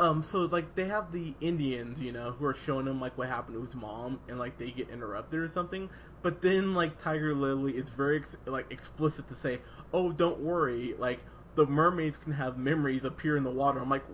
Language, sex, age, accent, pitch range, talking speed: English, male, 20-39, American, 135-170 Hz, 225 wpm